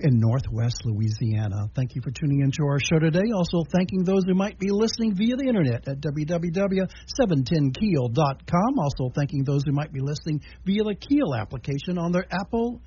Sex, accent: male, American